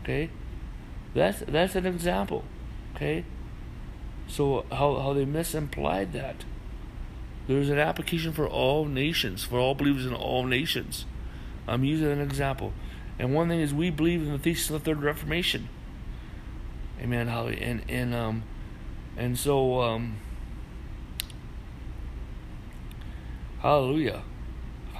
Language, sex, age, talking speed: English, male, 60-79, 120 wpm